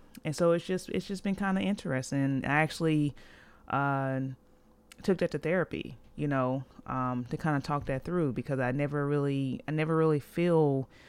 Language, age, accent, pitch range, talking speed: English, 30-49, American, 140-165 Hz, 185 wpm